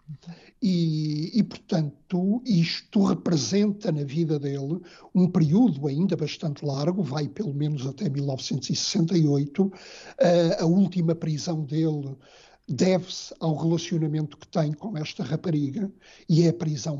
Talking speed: 125 wpm